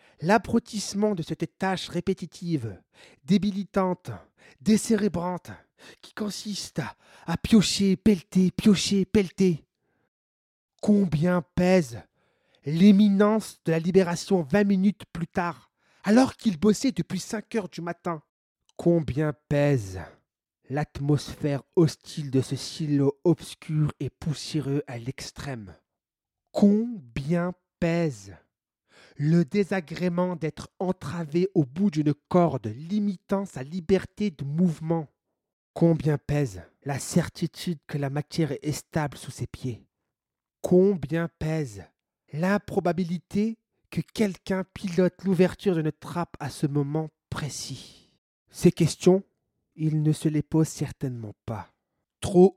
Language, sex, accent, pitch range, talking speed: French, male, French, 145-190 Hz, 110 wpm